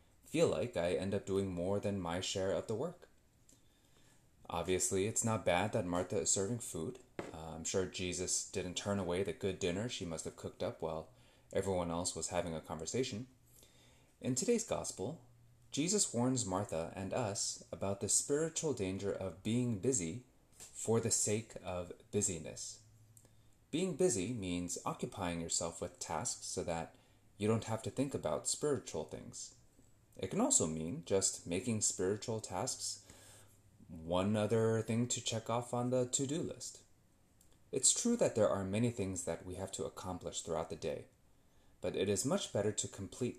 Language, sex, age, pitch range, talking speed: English, male, 30-49, 95-125 Hz, 165 wpm